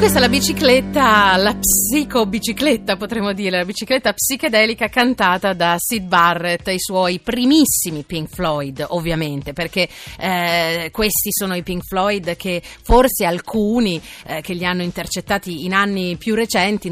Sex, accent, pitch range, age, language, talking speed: female, native, 170-210 Hz, 30-49, Italian, 140 wpm